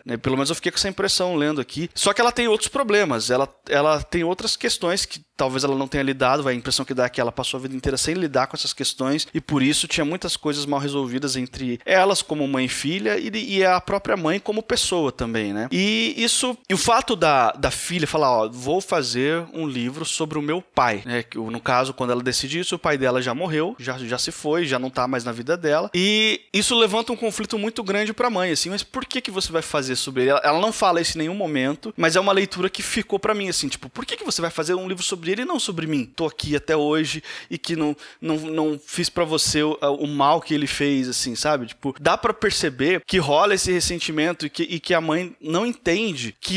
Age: 20-39